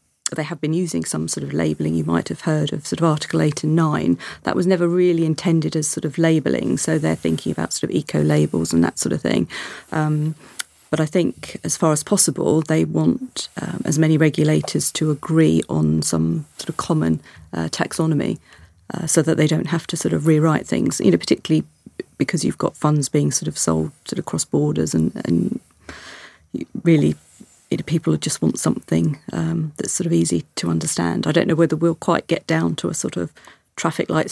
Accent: British